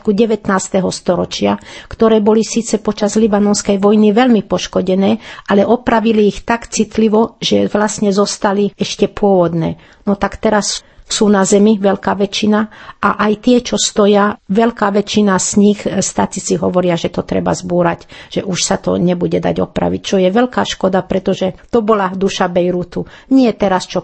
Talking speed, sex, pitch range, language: 155 wpm, female, 175-215 Hz, Slovak